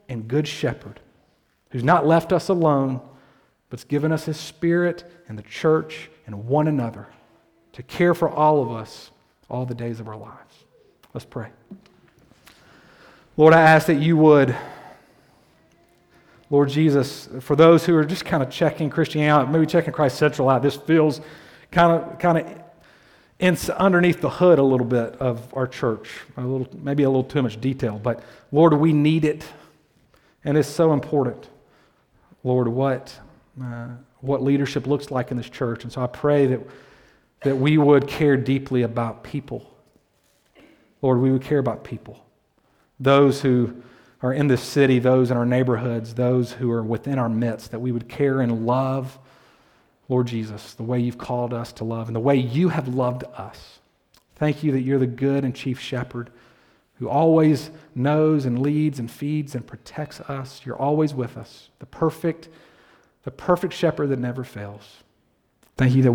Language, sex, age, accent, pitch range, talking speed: English, male, 40-59, American, 125-155 Hz, 170 wpm